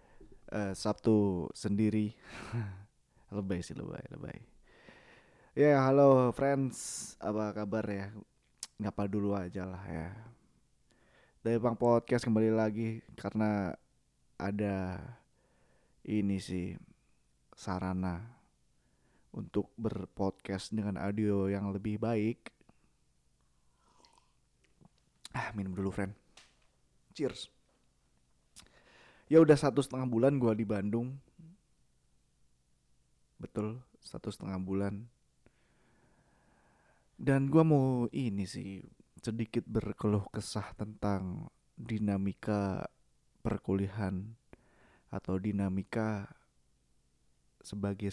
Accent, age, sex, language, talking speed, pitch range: native, 20-39, male, Indonesian, 80 wpm, 90-110 Hz